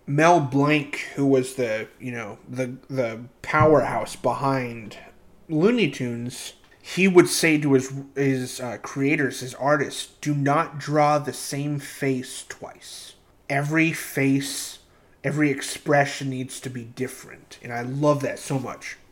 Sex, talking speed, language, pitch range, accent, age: male, 140 wpm, English, 125-145 Hz, American, 30-49